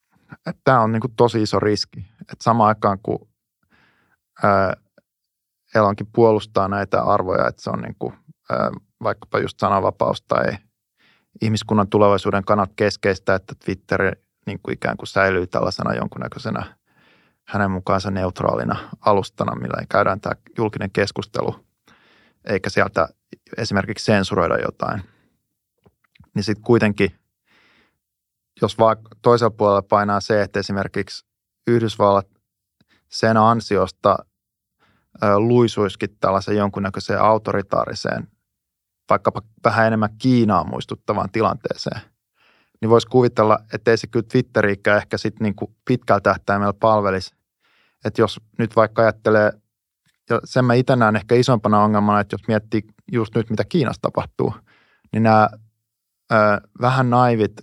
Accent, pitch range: native, 100-115 Hz